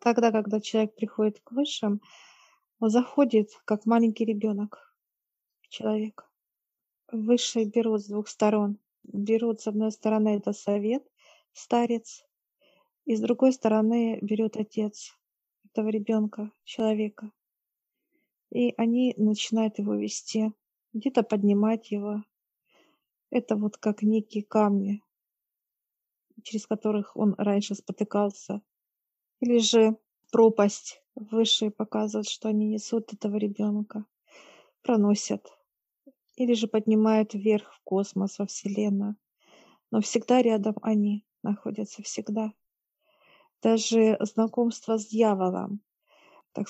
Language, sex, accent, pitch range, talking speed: Russian, female, native, 210-230 Hz, 105 wpm